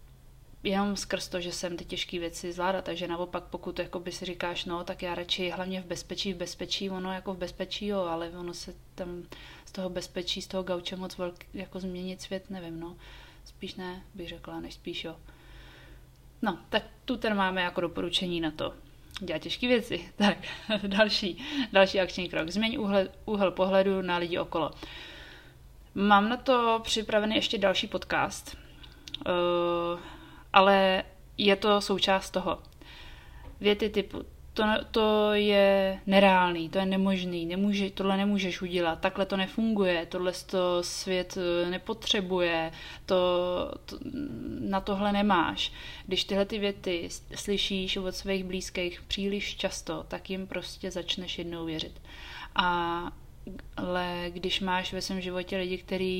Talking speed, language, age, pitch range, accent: 145 wpm, Czech, 20-39, 175-195 Hz, native